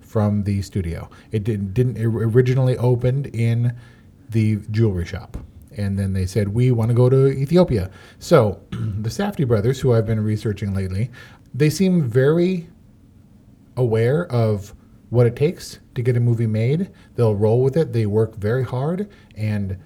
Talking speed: 165 wpm